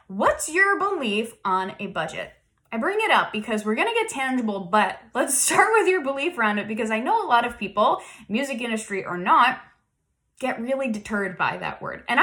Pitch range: 210-295 Hz